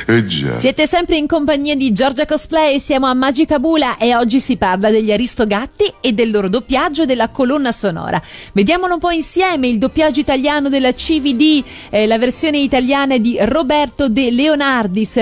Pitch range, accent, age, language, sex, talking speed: 225-295 Hz, native, 40-59, Italian, female, 160 wpm